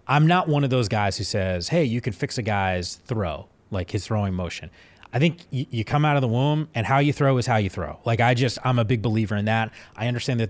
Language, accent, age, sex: English, American, 30-49, male